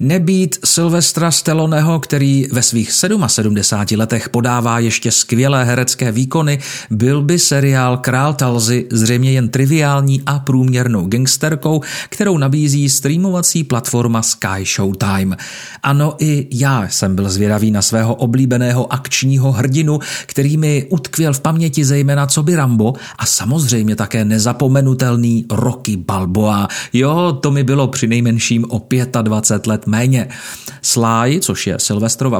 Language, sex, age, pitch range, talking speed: Czech, male, 40-59, 115-145 Hz, 130 wpm